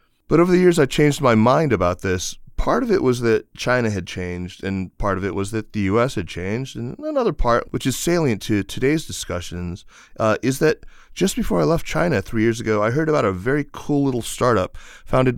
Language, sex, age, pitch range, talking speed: English, male, 30-49, 95-130 Hz, 220 wpm